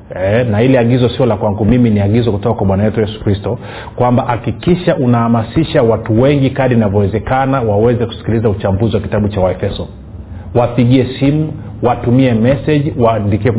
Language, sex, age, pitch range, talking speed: Swahili, male, 40-59, 110-145 Hz, 150 wpm